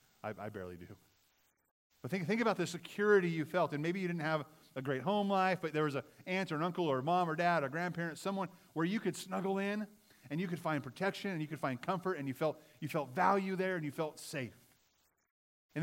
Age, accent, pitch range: 30-49, American, 115-175 Hz